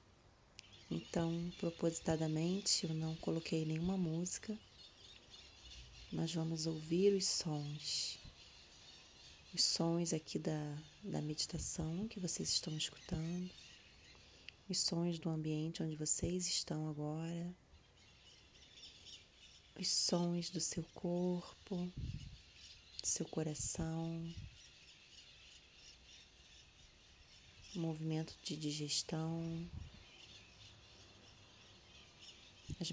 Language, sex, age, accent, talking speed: Portuguese, female, 30-49, Brazilian, 80 wpm